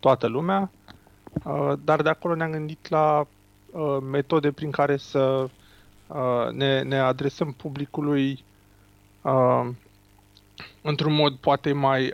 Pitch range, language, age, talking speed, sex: 120-150 Hz, Romanian, 30-49, 100 wpm, male